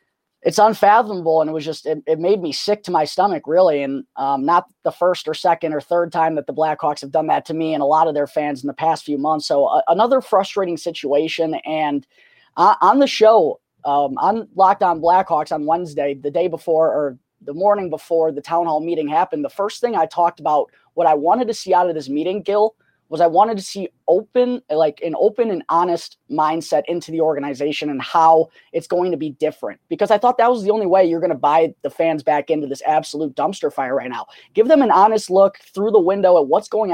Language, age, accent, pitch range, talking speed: English, 20-39, American, 155-195 Hz, 235 wpm